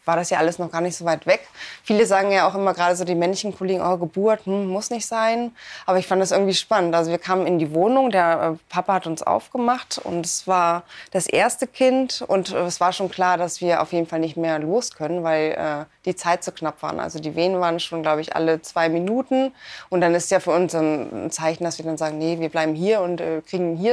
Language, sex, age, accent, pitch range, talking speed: German, female, 20-39, German, 165-195 Hz, 255 wpm